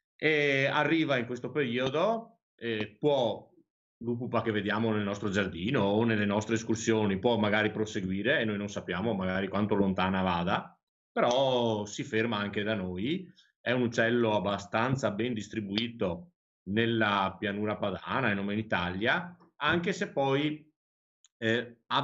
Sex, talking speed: male, 140 wpm